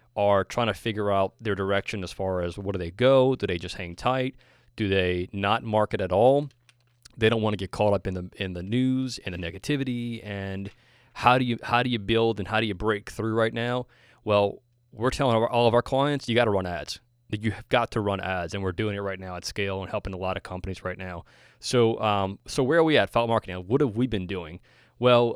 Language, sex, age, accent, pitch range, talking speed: English, male, 20-39, American, 95-115 Hz, 250 wpm